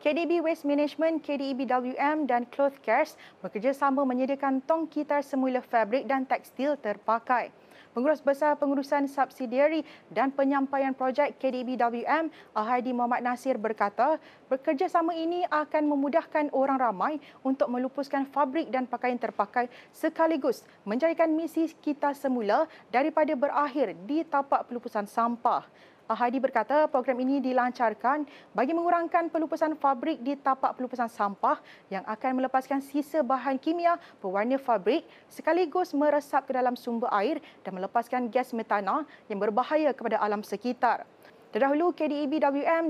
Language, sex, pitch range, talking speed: Malay, female, 245-300 Hz, 125 wpm